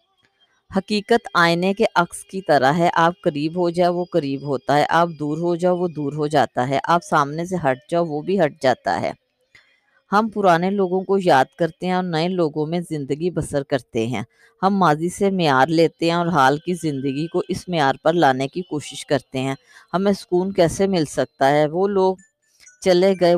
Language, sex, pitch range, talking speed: Urdu, female, 145-185 Hz, 200 wpm